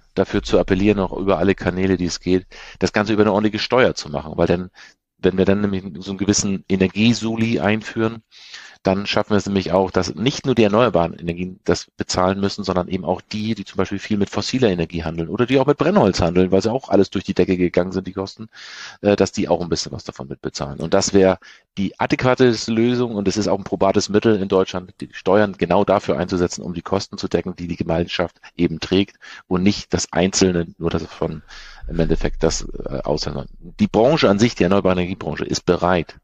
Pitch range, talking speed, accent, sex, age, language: 85-105 Hz, 215 wpm, German, male, 40-59, German